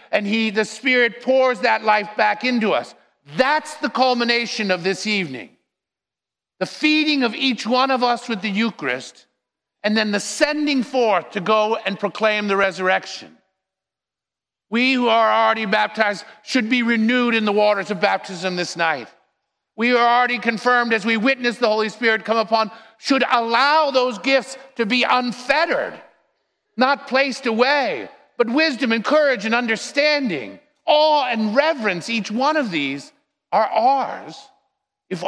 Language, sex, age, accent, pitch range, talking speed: English, male, 50-69, American, 200-255 Hz, 155 wpm